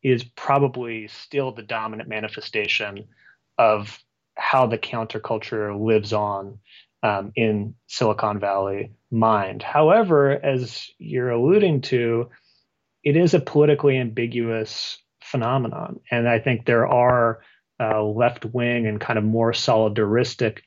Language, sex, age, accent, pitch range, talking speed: English, male, 30-49, American, 110-135 Hz, 120 wpm